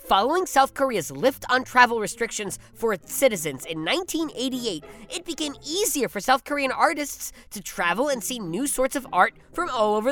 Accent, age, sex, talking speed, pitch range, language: American, 10-29, female, 180 wpm, 220-350 Hz, English